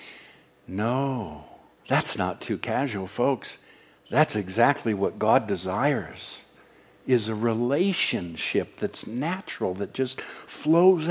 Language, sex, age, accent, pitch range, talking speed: English, male, 60-79, American, 110-160 Hz, 105 wpm